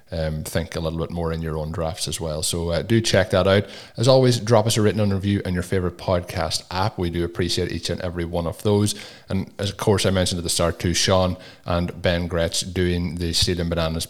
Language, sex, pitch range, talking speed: English, male, 85-100 Hz, 250 wpm